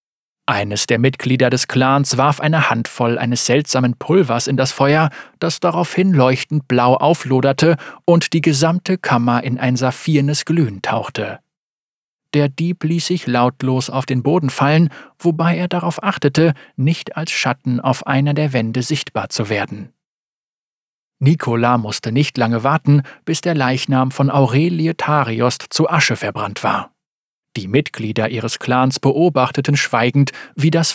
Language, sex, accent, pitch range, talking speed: German, male, German, 125-160 Hz, 145 wpm